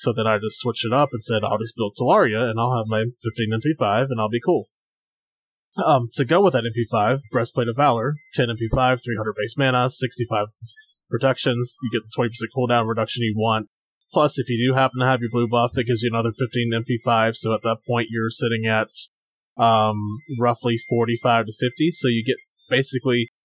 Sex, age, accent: male, 20-39, American